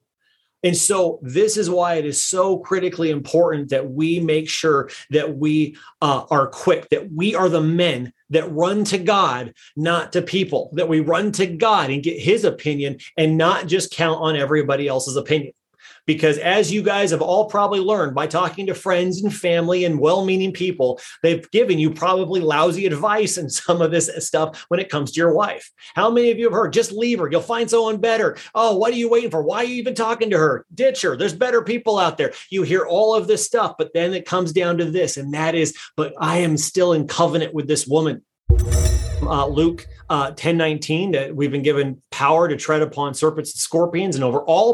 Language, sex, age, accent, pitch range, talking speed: English, male, 30-49, American, 150-185 Hz, 215 wpm